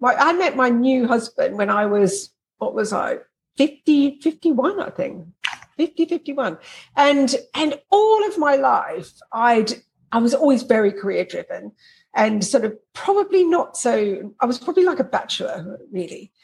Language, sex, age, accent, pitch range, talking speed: English, female, 50-69, British, 200-310 Hz, 150 wpm